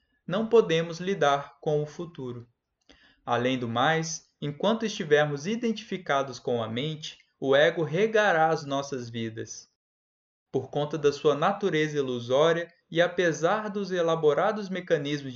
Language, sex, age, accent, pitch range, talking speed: Portuguese, male, 20-39, Brazilian, 140-185 Hz, 125 wpm